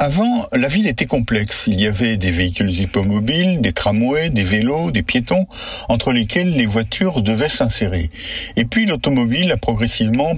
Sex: male